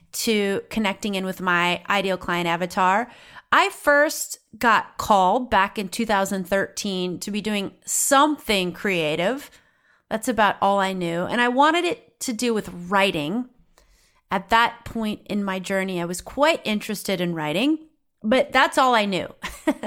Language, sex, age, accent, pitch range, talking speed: English, female, 30-49, American, 190-250 Hz, 150 wpm